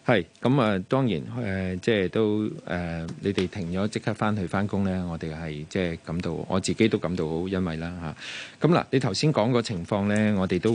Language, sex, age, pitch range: Chinese, male, 20-39, 85-105 Hz